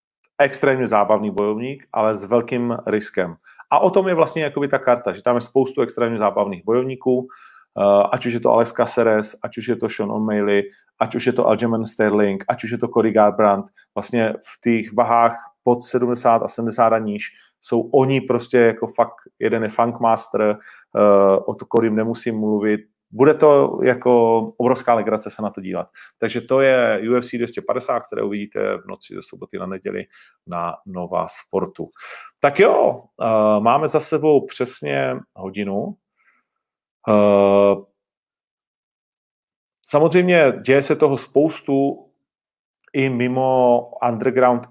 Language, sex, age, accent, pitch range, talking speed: Czech, male, 30-49, native, 105-125 Hz, 150 wpm